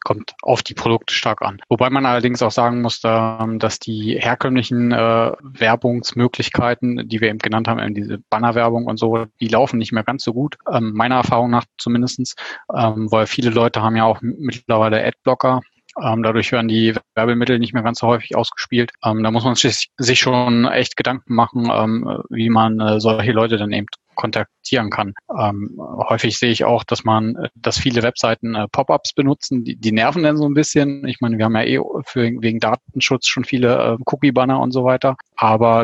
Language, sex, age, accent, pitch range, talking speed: German, male, 20-39, German, 110-125 Hz, 180 wpm